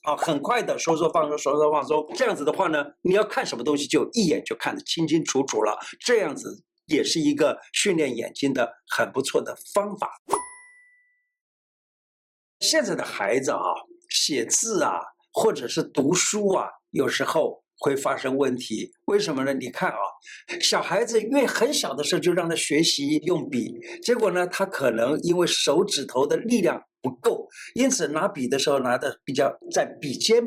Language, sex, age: Chinese, male, 60-79